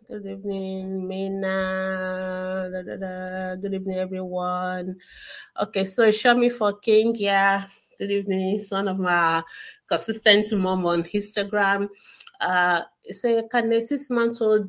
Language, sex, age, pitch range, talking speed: English, female, 30-49, 190-230 Hz, 115 wpm